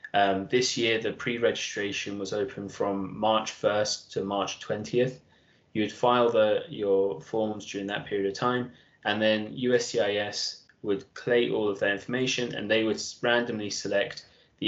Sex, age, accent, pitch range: male, 20-39, British, 100-120 Hz